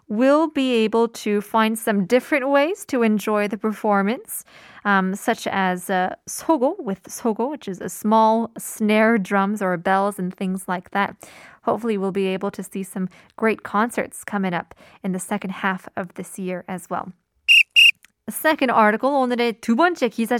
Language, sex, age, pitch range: Korean, female, 20-39, 200-280 Hz